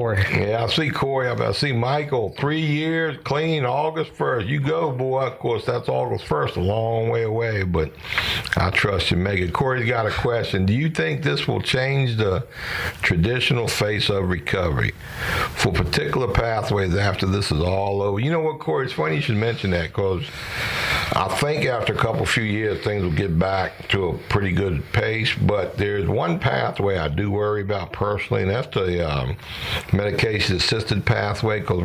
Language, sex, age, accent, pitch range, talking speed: English, male, 60-79, American, 90-120 Hz, 180 wpm